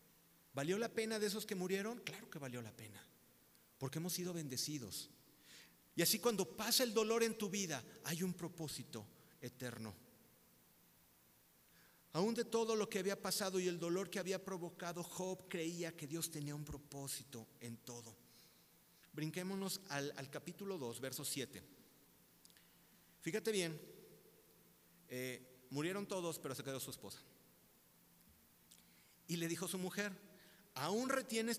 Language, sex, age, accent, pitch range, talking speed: Spanish, male, 40-59, Mexican, 130-180 Hz, 145 wpm